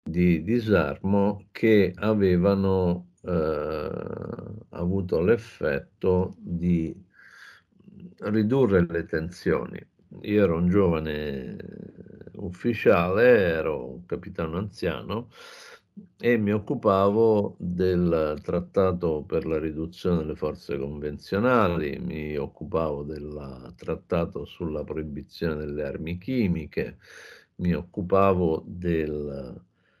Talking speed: 85 wpm